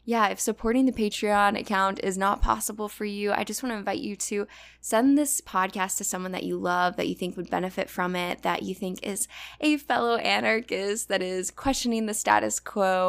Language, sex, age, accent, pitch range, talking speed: English, female, 10-29, American, 190-235 Hz, 210 wpm